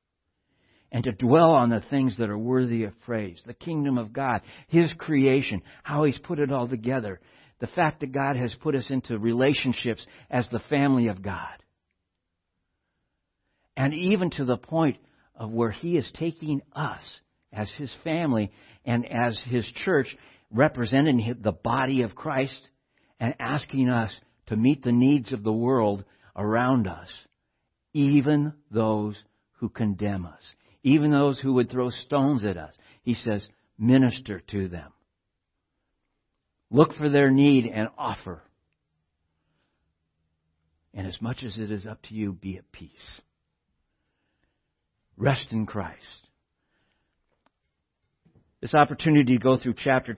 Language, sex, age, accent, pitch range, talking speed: English, male, 60-79, American, 100-135 Hz, 140 wpm